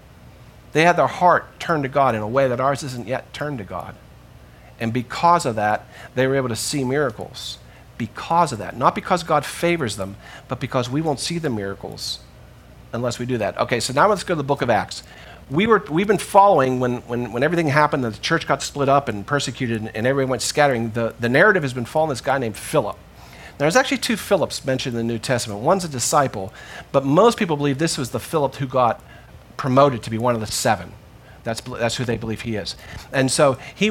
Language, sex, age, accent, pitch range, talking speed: English, male, 50-69, American, 115-155 Hz, 225 wpm